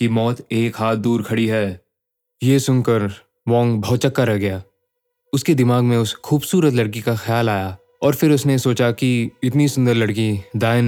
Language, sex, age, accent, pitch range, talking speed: Hindi, male, 20-39, native, 105-125 Hz, 170 wpm